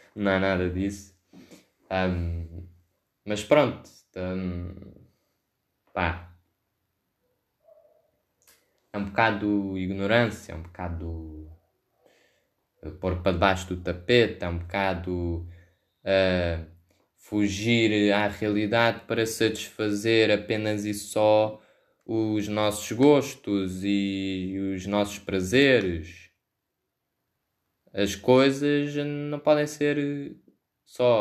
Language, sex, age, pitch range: Portuguese, male, 20-39, 95-125 Hz